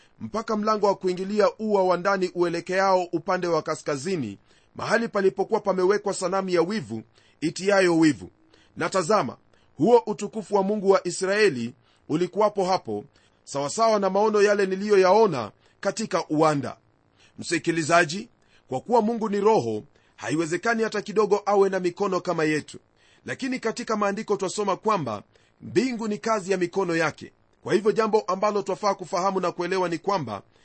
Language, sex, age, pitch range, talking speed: Swahili, male, 40-59, 160-210 Hz, 135 wpm